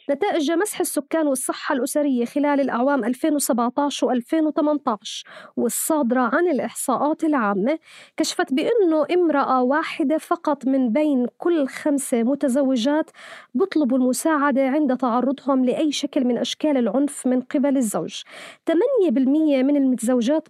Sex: female